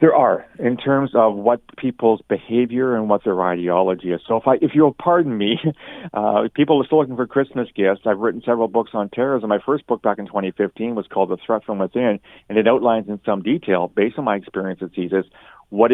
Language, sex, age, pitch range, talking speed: English, male, 40-59, 100-120 Hz, 220 wpm